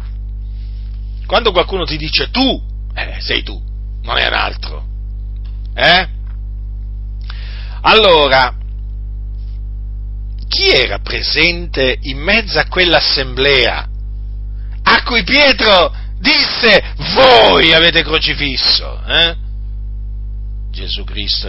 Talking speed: 85 wpm